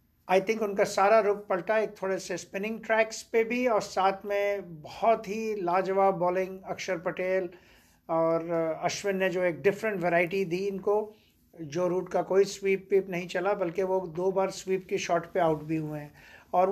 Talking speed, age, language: 185 wpm, 50-69, Hindi